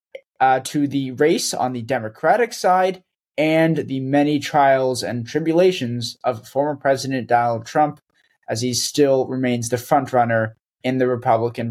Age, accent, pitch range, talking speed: 20-39, American, 125-160 Hz, 150 wpm